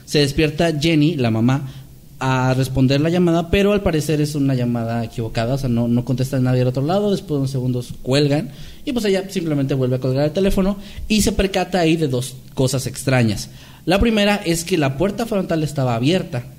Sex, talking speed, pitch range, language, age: male, 205 wpm, 130-175 Hz, Spanish, 30-49